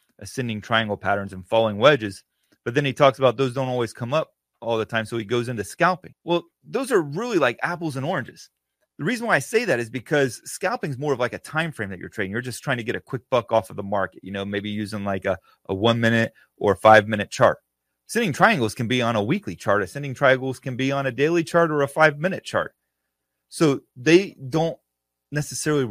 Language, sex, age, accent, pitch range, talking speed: English, male, 30-49, American, 110-175 Hz, 235 wpm